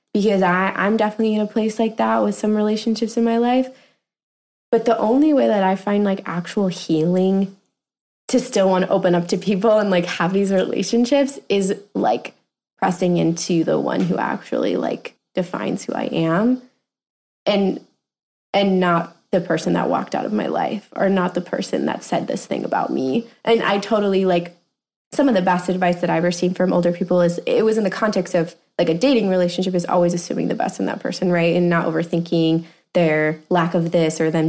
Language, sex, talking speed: English, female, 205 wpm